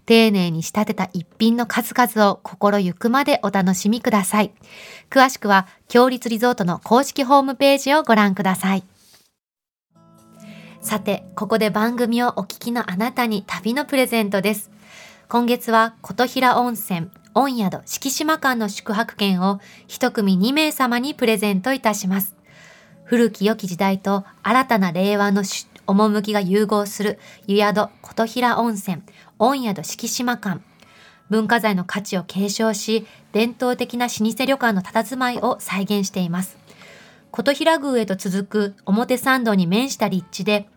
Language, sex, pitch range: Japanese, female, 200-235 Hz